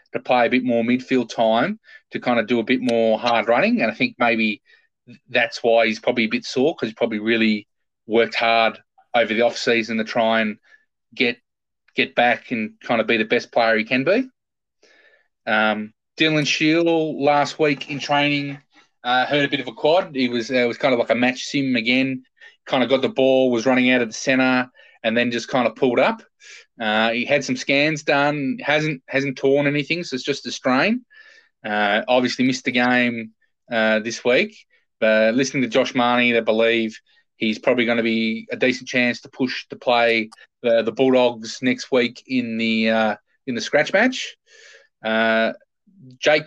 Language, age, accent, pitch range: English, 20-39, Australian, 115-145 Hz